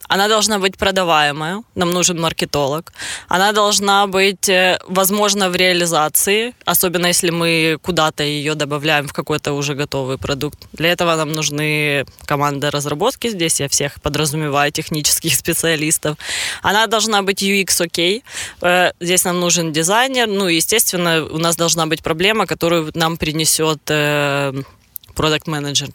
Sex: female